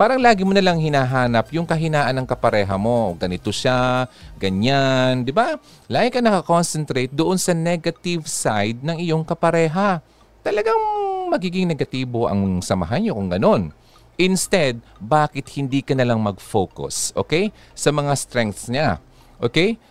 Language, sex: Filipino, male